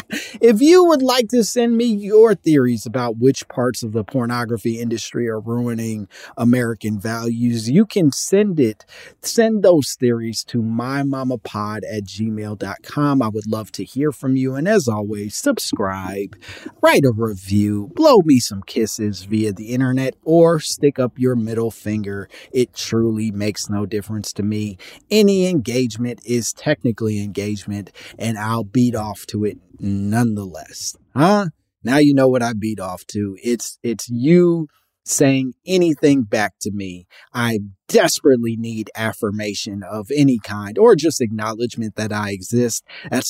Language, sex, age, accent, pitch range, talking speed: English, male, 30-49, American, 105-135 Hz, 150 wpm